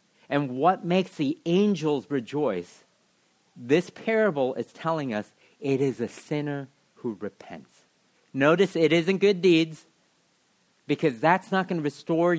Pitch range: 125-175 Hz